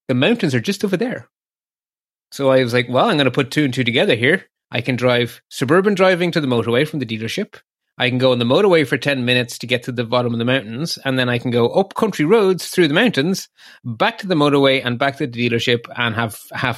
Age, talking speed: 30-49, 255 wpm